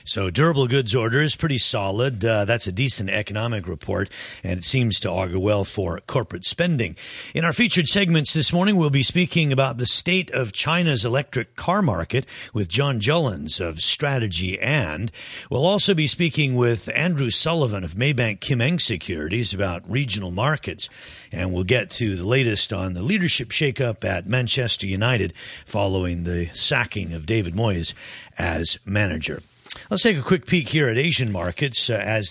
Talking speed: 170 wpm